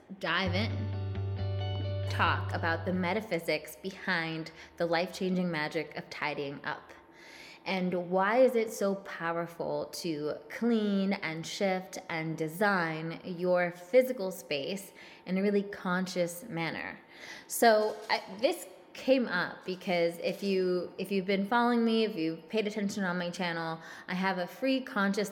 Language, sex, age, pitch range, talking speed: English, female, 20-39, 170-215 Hz, 135 wpm